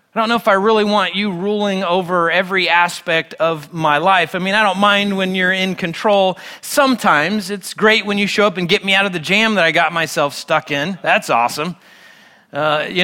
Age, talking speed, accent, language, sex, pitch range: 30-49, 220 wpm, American, English, male, 165-215 Hz